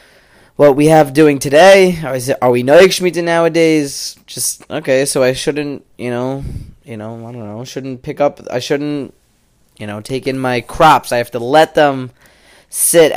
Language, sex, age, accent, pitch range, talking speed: English, male, 20-39, American, 130-170 Hz, 180 wpm